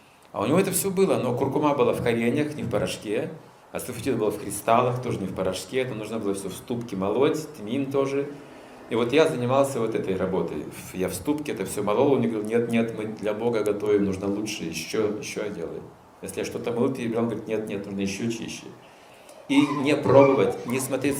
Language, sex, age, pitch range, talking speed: Russian, male, 40-59, 105-140 Hz, 215 wpm